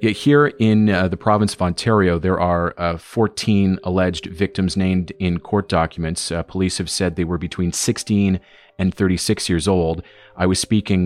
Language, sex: English, male